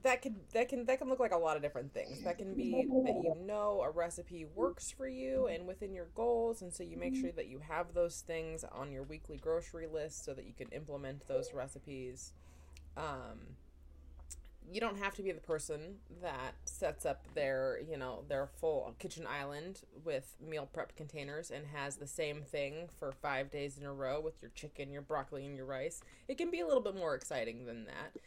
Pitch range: 140-225 Hz